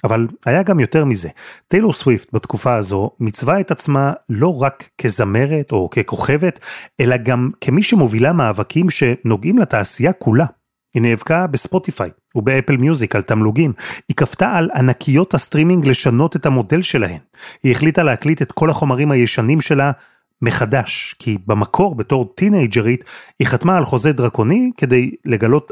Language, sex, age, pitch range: Hebrew, male, 30-49, 120-165 Hz